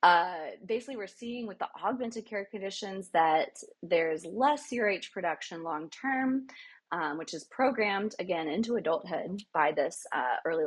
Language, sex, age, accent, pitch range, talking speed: English, female, 30-49, American, 160-235 Hz, 150 wpm